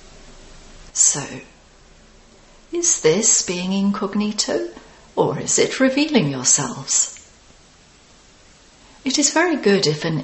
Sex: female